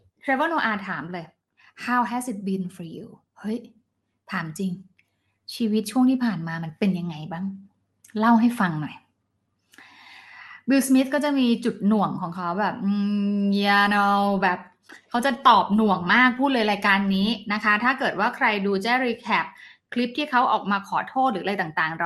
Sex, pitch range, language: female, 195-245 Hz, English